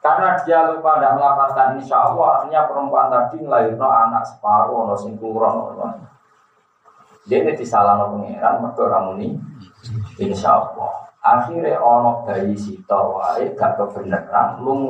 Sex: male